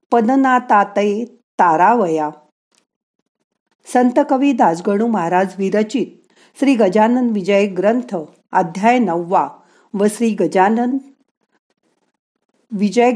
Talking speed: 80 wpm